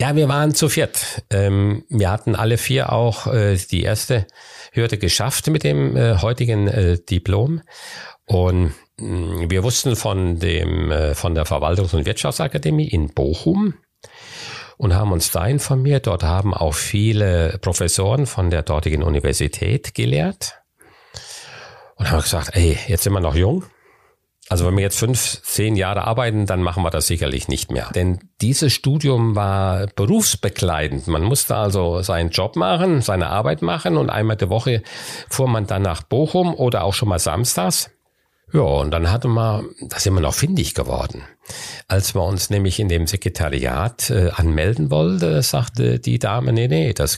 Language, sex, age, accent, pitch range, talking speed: German, male, 50-69, German, 90-115 Hz, 155 wpm